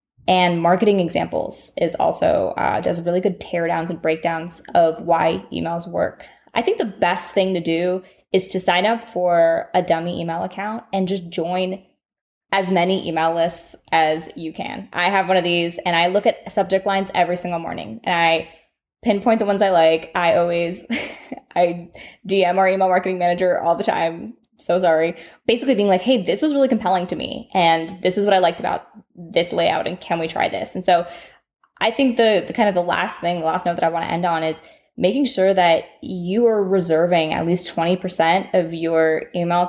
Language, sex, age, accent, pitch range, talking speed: English, female, 20-39, American, 165-195 Hz, 205 wpm